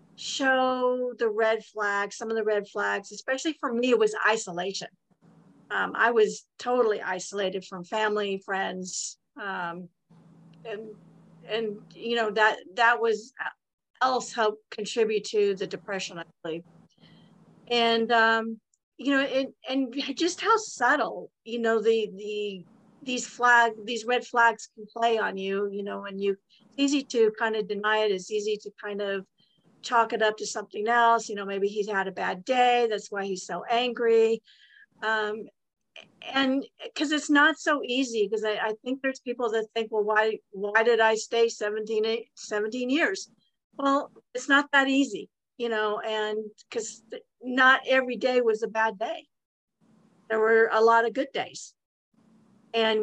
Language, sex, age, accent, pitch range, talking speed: English, female, 50-69, American, 205-245 Hz, 160 wpm